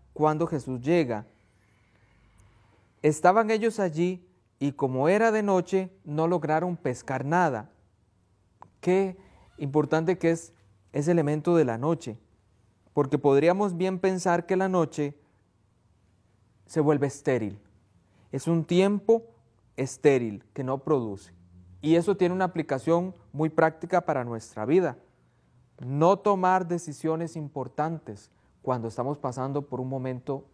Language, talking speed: Spanish, 120 wpm